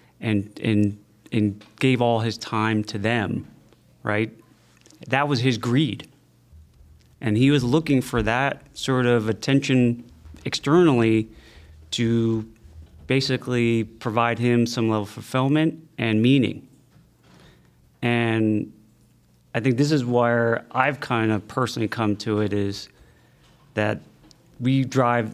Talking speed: 120 wpm